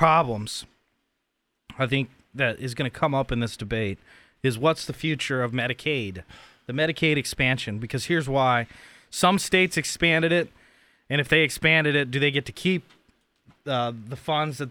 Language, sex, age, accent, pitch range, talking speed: English, male, 20-39, American, 120-150 Hz, 170 wpm